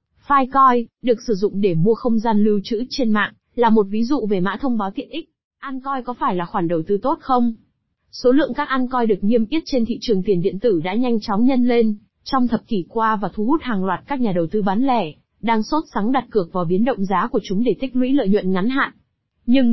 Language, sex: Vietnamese, female